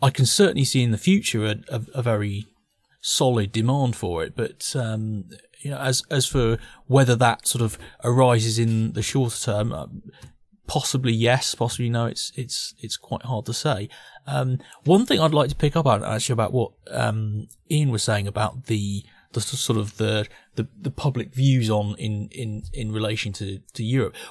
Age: 30-49